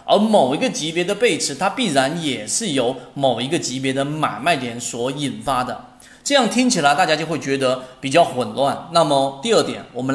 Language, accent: Chinese, native